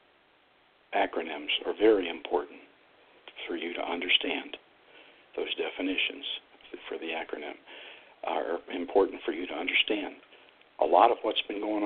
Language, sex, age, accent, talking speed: English, male, 60-79, American, 125 wpm